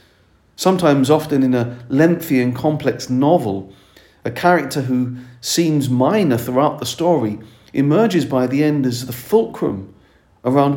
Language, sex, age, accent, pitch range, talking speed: English, male, 40-59, British, 105-140 Hz, 135 wpm